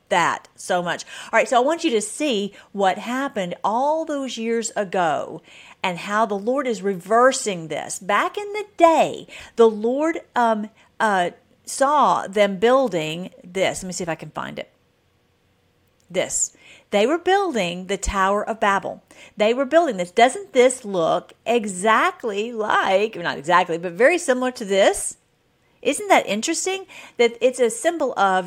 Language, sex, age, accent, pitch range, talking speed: English, female, 50-69, American, 190-255 Hz, 160 wpm